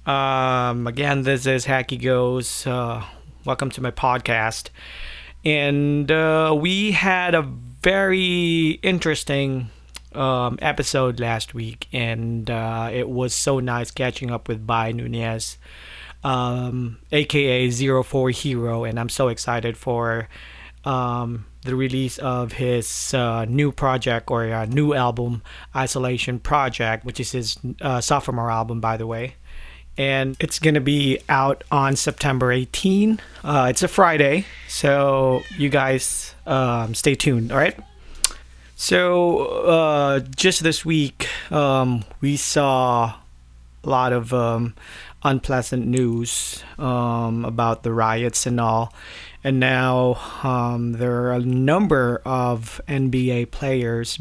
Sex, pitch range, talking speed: male, 115-135 Hz, 125 wpm